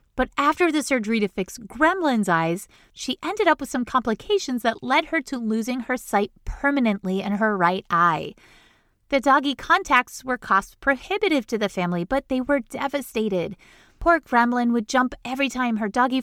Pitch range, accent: 220-295 Hz, American